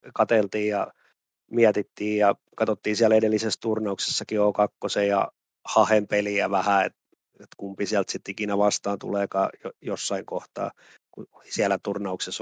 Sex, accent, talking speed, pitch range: male, native, 115 wpm, 100-110 Hz